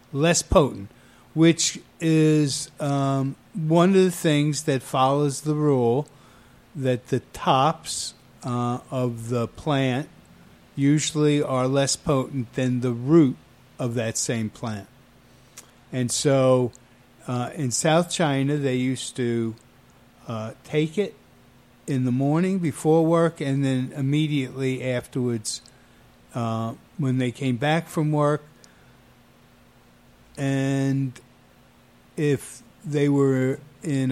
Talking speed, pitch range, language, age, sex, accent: 115 wpm, 120-145 Hz, English, 50-69, male, American